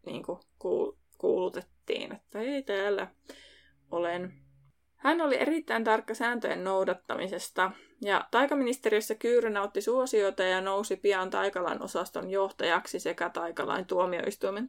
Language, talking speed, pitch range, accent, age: Finnish, 110 wpm, 190-255 Hz, native, 20-39